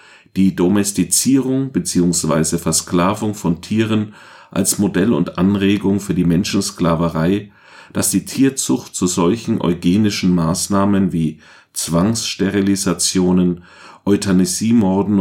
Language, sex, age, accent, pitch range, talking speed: German, male, 40-59, German, 90-115 Hz, 90 wpm